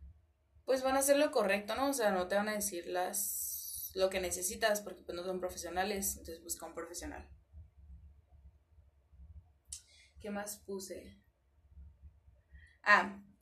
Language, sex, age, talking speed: Spanish, female, 20-39, 135 wpm